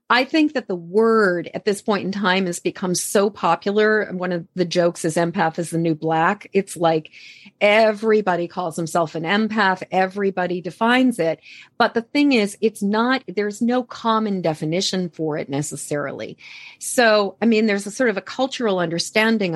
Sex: female